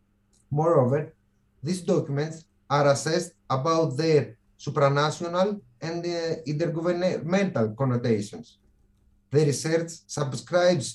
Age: 30-49